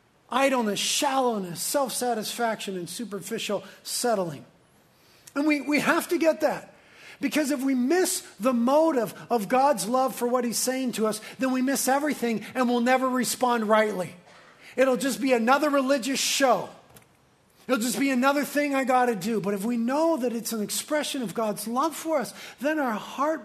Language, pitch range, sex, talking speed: English, 195-265 Hz, male, 170 wpm